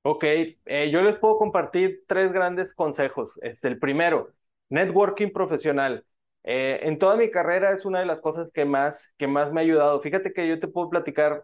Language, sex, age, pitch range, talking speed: English, male, 30-49, 135-175 Hz, 195 wpm